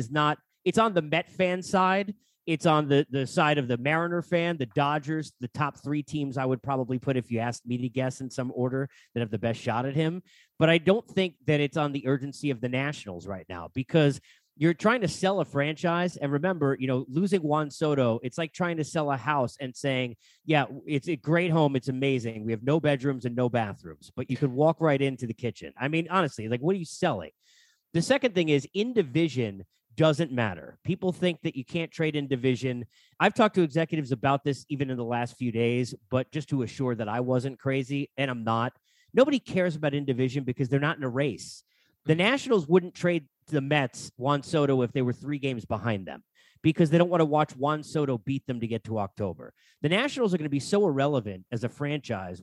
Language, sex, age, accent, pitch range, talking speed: English, male, 30-49, American, 125-165 Hz, 230 wpm